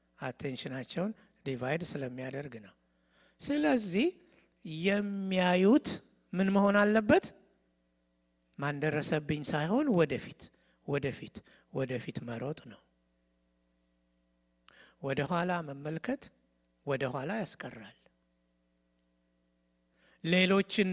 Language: English